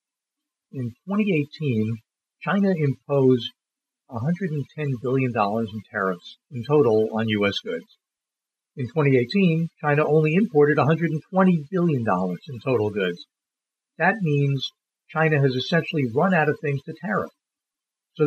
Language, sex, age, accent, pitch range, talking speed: English, male, 50-69, American, 125-160 Hz, 115 wpm